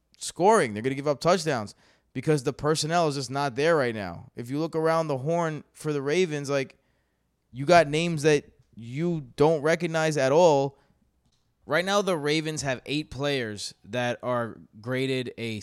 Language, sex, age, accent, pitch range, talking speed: English, male, 20-39, American, 120-150 Hz, 175 wpm